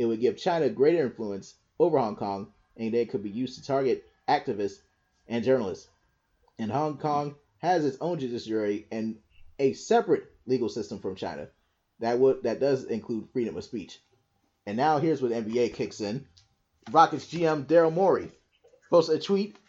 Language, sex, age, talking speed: English, male, 30-49, 165 wpm